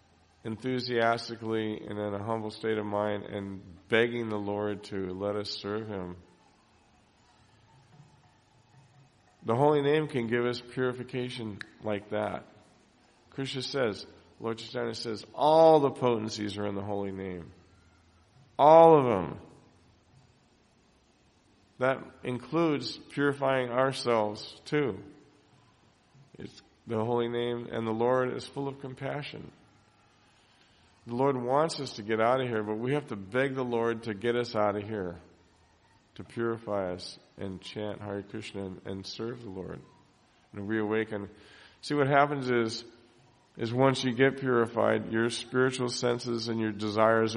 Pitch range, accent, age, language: 105-130 Hz, American, 40-59, English